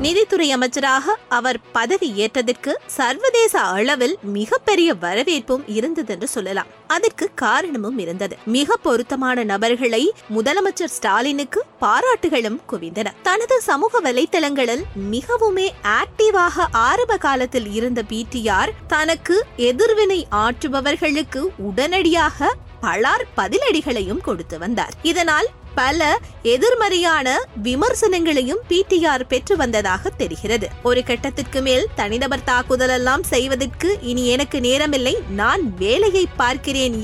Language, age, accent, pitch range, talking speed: Tamil, 20-39, native, 255-400 Hz, 90 wpm